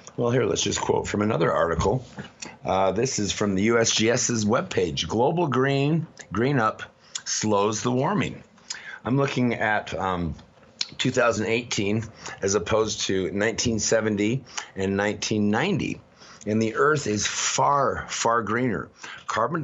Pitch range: 95-115 Hz